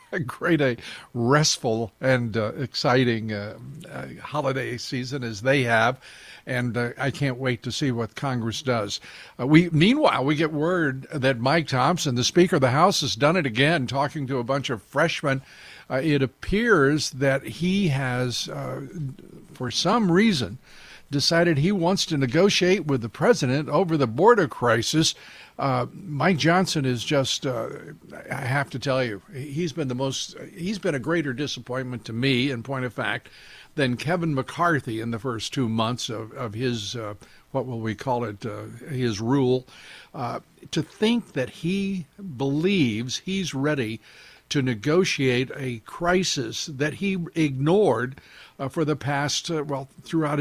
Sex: male